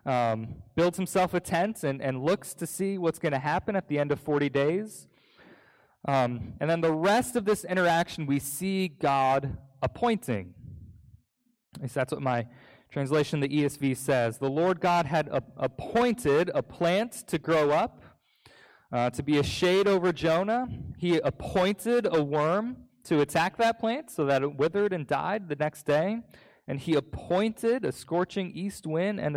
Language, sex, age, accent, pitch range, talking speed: English, male, 20-39, American, 120-180 Hz, 170 wpm